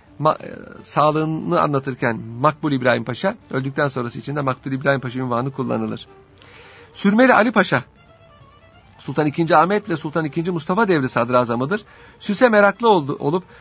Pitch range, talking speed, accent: 130-175 Hz, 135 wpm, native